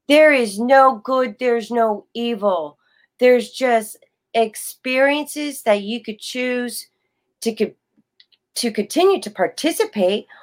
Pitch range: 215-285 Hz